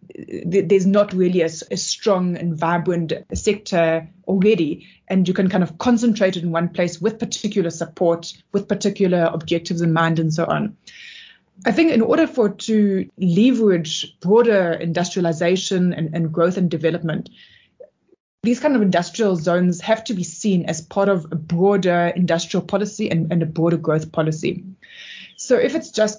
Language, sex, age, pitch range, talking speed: English, female, 20-39, 170-205 Hz, 165 wpm